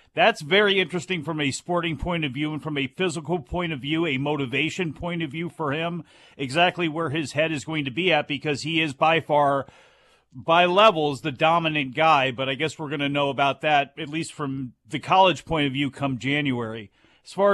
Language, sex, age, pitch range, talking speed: English, male, 40-59, 140-170 Hz, 215 wpm